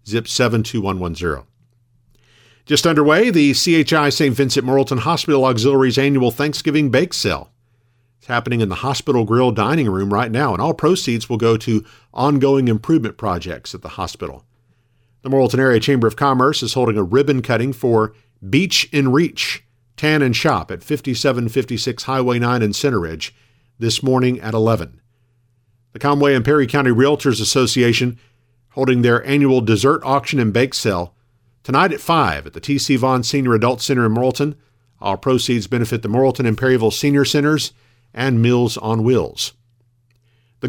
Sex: male